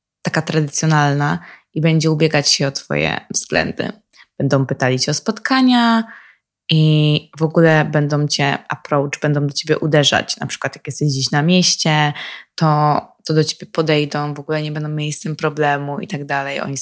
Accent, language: native, Polish